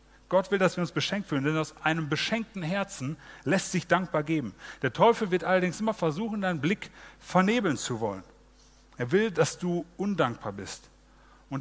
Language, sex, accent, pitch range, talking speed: German, male, German, 135-185 Hz, 175 wpm